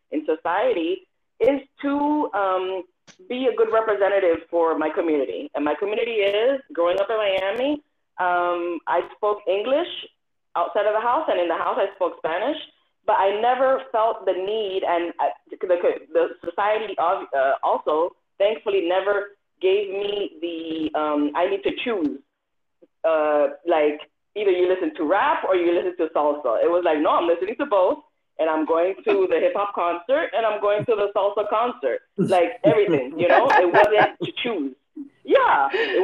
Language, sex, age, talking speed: English, female, 20-39, 170 wpm